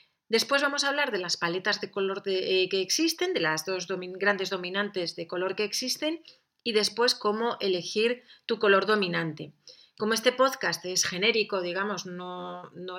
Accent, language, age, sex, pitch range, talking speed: Spanish, Spanish, 30-49, female, 185-225 Hz, 165 wpm